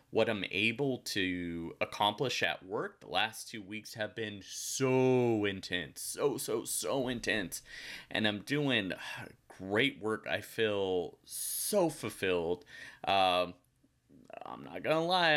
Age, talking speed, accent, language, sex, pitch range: 30-49, 130 wpm, American, English, male, 100-140 Hz